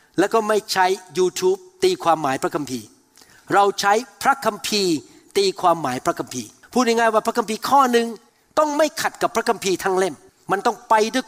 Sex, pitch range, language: male, 185-265 Hz, Thai